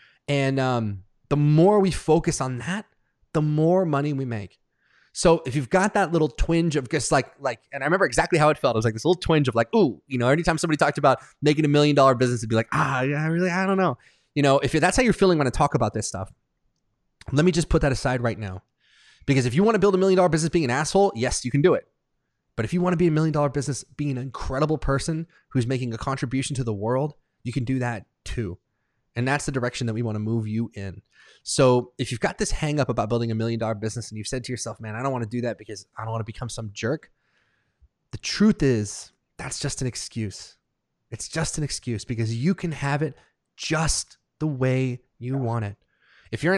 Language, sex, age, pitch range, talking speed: English, male, 20-39, 120-165 Hz, 250 wpm